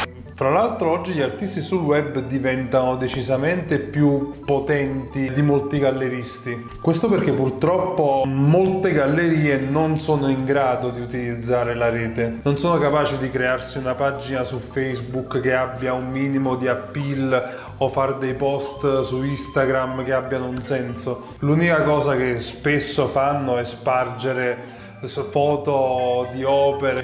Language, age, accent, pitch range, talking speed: Italian, 20-39, native, 130-150 Hz, 140 wpm